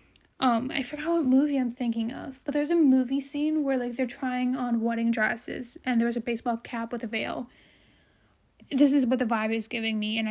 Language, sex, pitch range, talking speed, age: English, female, 225-260 Hz, 220 wpm, 10-29